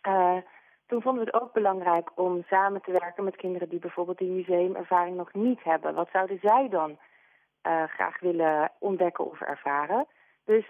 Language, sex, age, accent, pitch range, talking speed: Dutch, female, 30-49, Dutch, 175-215 Hz, 175 wpm